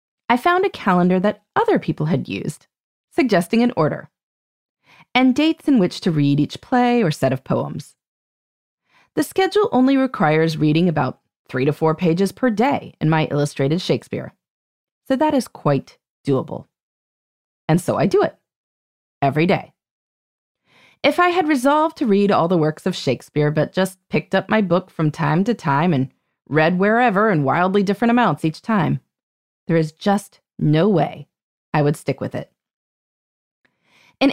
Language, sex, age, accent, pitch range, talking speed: English, female, 30-49, American, 155-250 Hz, 165 wpm